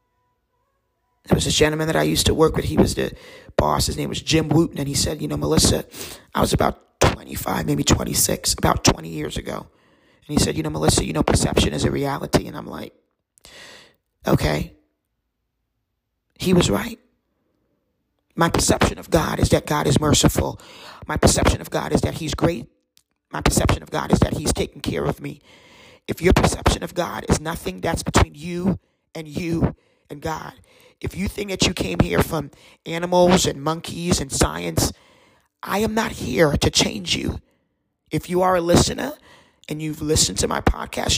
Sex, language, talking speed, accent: male, English, 185 wpm, American